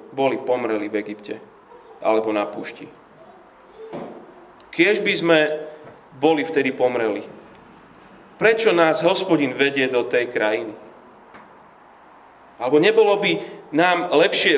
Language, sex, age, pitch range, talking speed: Slovak, male, 30-49, 135-215 Hz, 105 wpm